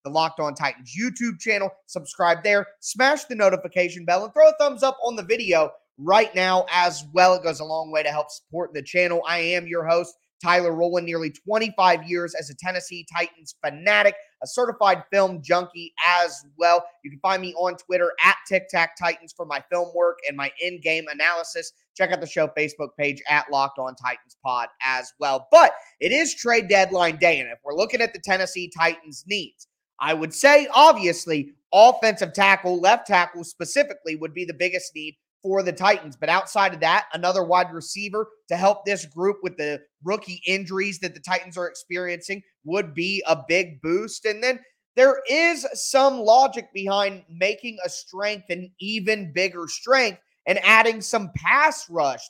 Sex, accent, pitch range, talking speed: male, American, 165-205 Hz, 185 wpm